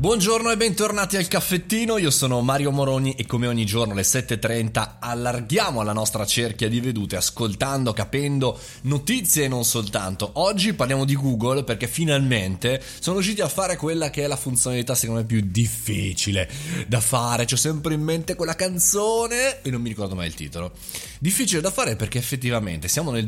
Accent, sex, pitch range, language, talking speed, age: native, male, 105-150 Hz, Italian, 175 wpm, 20-39